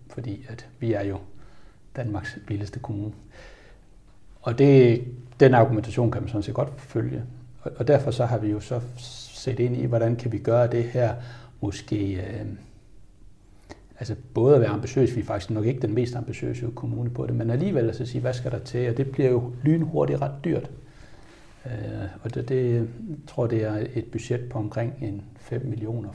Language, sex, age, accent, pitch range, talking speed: Danish, male, 60-79, native, 105-125 Hz, 195 wpm